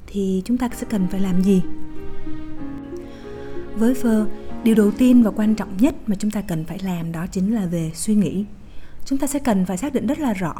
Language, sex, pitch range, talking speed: Vietnamese, female, 190-240 Hz, 220 wpm